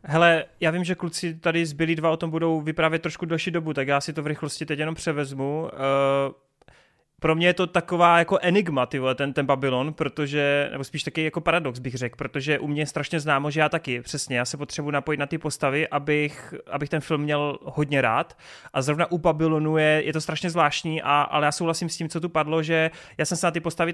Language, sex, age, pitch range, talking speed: Czech, male, 30-49, 145-165 Hz, 230 wpm